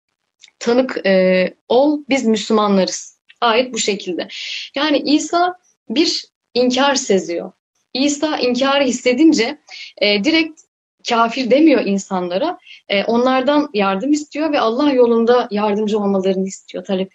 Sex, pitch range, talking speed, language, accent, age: female, 200-270 Hz, 110 wpm, Turkish, native, 10-29